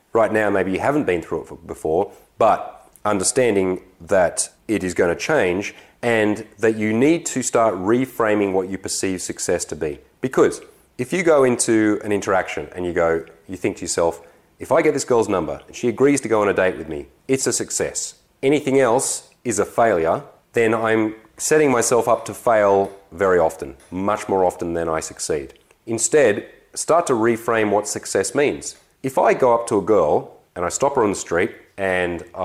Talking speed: 195 wpm